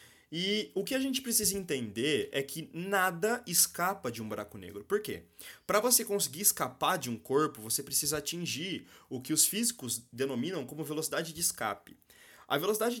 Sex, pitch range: male, 120-195 Hz